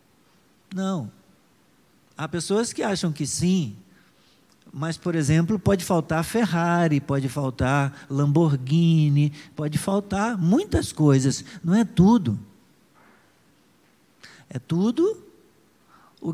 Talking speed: 95 wpm